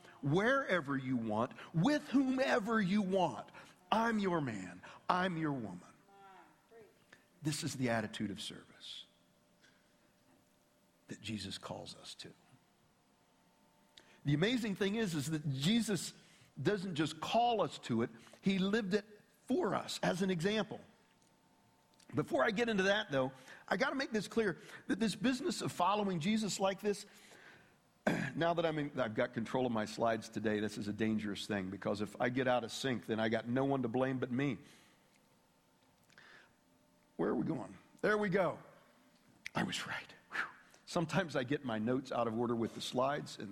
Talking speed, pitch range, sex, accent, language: 165 wpm, 130-210 Hz, male, American, English